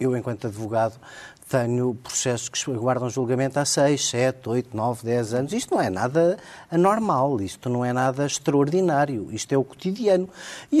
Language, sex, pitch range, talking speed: Portuguese, male, 125-180 Hz, 165 wpm